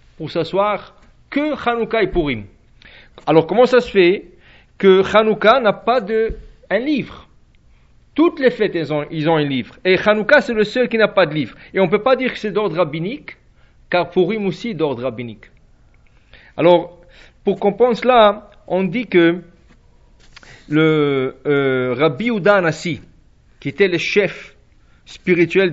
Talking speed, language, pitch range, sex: 160 wpm, English, 165-220 Hz, male